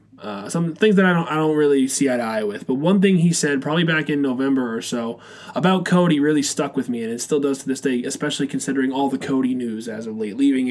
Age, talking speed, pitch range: 20-39, 270 wpm, 135-175 Hz